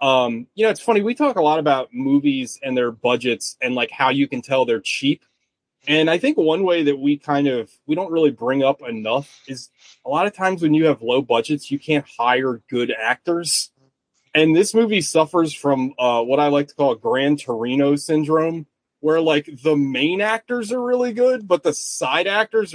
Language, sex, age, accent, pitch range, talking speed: English, male, 30-49, American, 135-165 Hz, 205 wpm